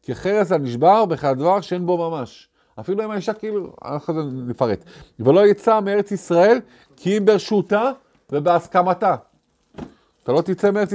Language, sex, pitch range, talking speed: Hebrew, male, 125-190 Hz, 130 wpm